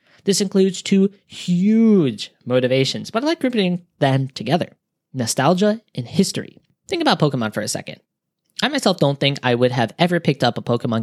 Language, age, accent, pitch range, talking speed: English, 20-39, American, 130-190 Hz, 175 wpm